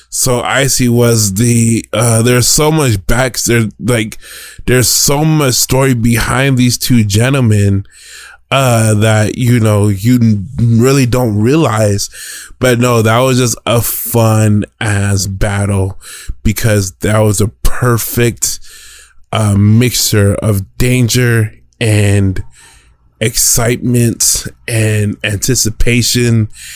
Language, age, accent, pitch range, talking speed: English, 20-39, American, 105-120 Hz, 110 wpm